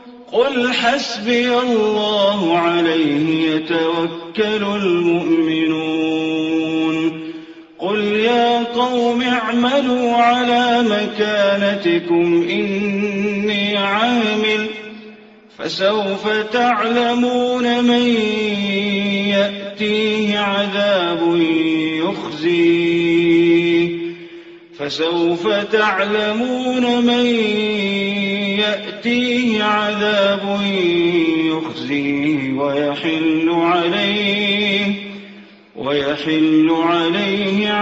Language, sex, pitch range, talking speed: Arabic, male, 170-215 Hz, 50 wpm